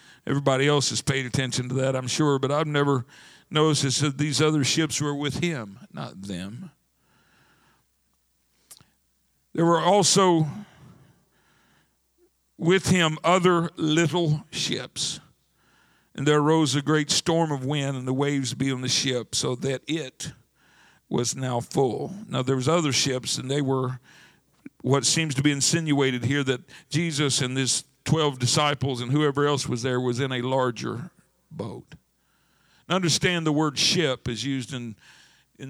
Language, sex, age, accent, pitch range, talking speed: English, male, 50-69, American, 120-150 Hz, 150 wpm